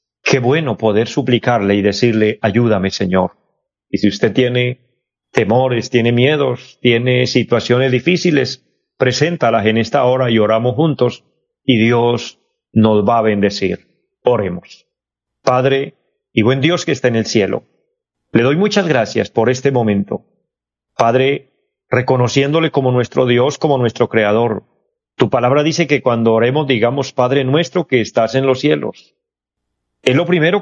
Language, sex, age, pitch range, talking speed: Spanish, male, 40-59, 115-140 Hz, 145 wpm